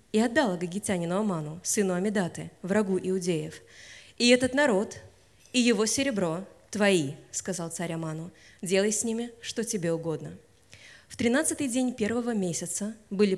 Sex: female